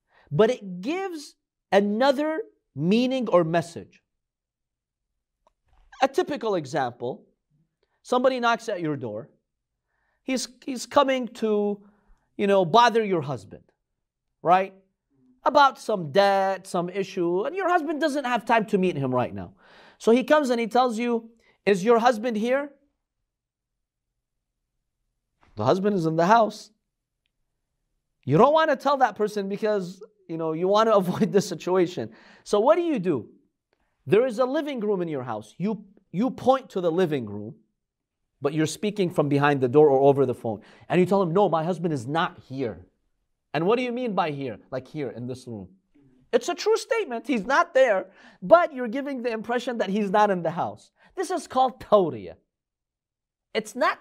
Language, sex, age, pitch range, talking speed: English, male, 40-59, 160-250 Hz, 170 wpm